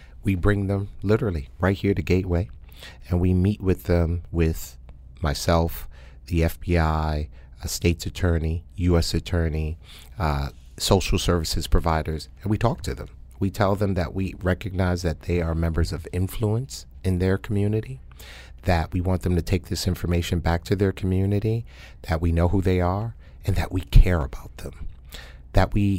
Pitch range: 75-95 Hz